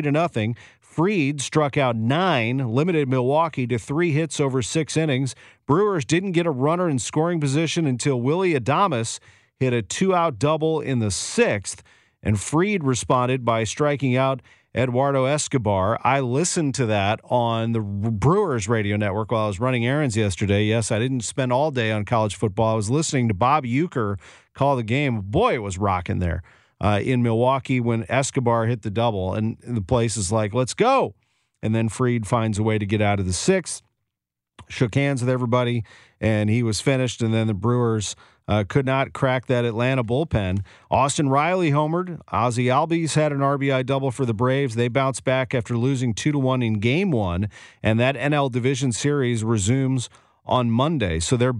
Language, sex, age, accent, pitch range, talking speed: English, male, 40-59, American, 115-145 Hz, 185 wpm